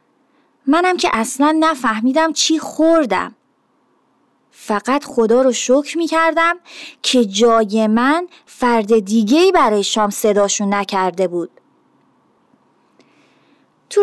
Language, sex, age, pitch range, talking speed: Persian, female, 30-49, 225-290 Hz, 95 wpm